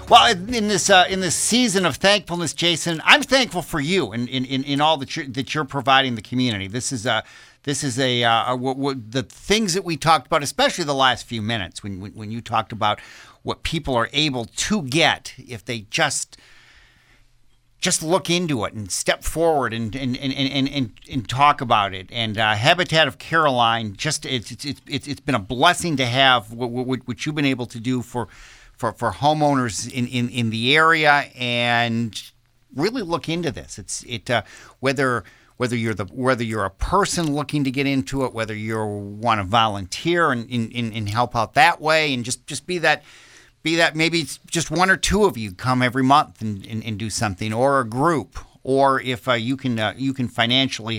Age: 50-69